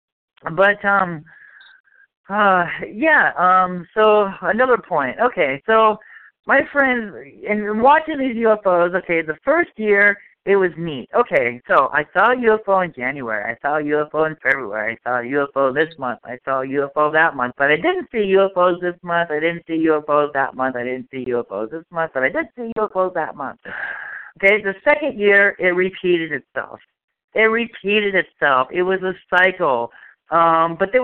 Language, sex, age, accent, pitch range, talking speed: English, male, 50-69, American, 160-215 Hz, 180 wpm